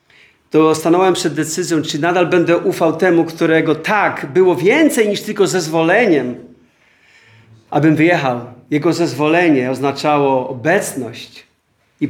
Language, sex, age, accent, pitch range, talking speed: Polish, male, 40-59, native, 135-170 Hz, 115 wpm